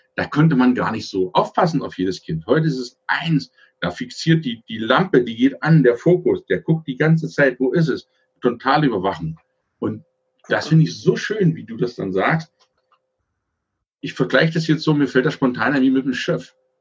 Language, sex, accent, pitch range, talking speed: German, male, German, 100-145 Hz, 210 wpm